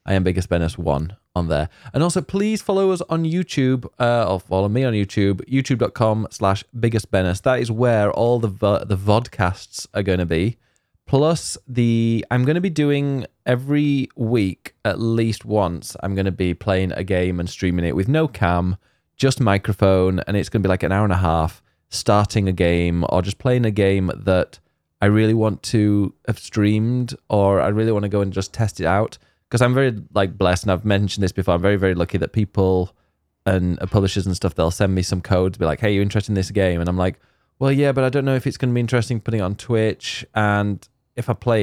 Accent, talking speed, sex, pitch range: British, 220 wpm, male, 90-120 Hz